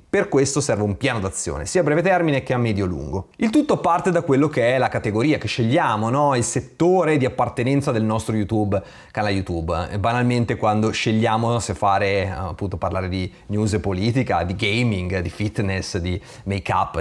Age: 30-49